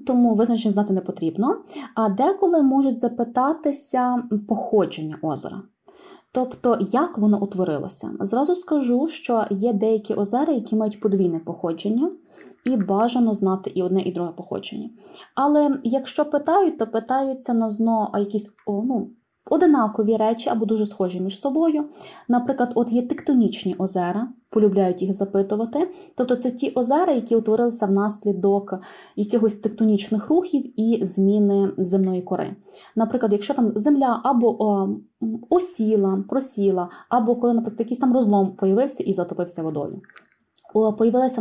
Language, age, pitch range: Ukrainian, 20-39, 200-255 Hz